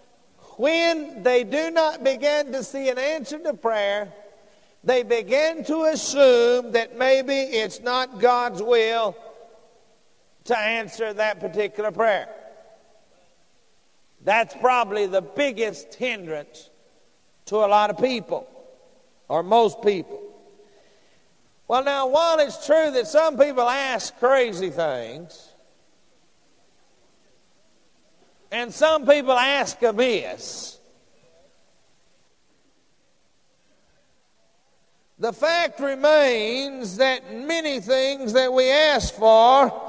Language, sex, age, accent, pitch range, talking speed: English, male, 50-69, American, 230-300 Hz, 100 wpm